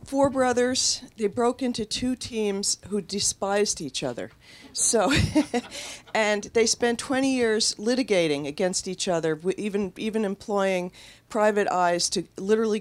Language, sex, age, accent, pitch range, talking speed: English, female, 50-69, American, 160-205 Hz, 130 wpm